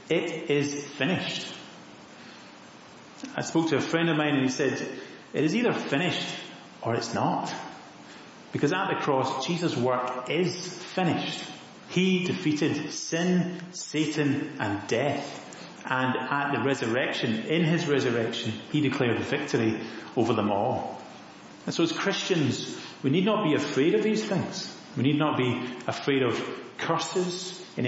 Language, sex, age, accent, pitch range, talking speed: English, male, 30-49, British, 125-165 Hz, 145 wpm